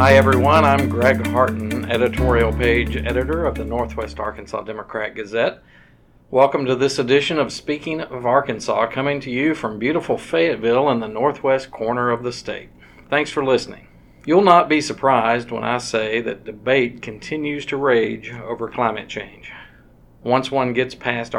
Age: 50-69